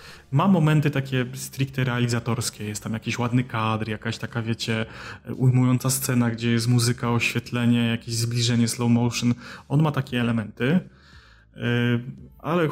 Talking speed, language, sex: 130 wpm, Polish, male